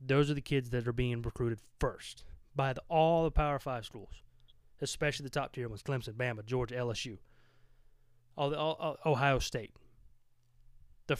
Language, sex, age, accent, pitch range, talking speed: English, male, 30-49, American, 120-160 Hz, 165 wpm